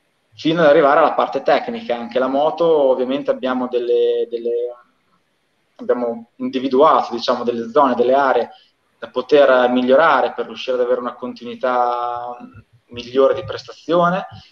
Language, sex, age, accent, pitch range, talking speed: Italian, male, 20-39, native, 120-140 Hz, 130 wpm